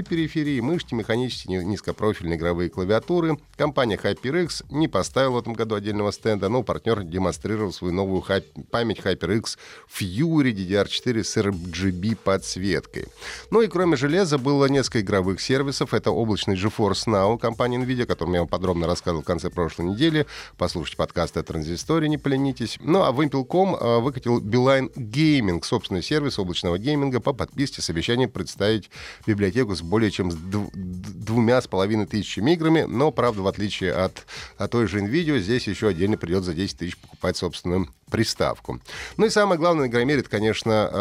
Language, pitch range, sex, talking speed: Russian, 95-130 Hz, male, 165 wpm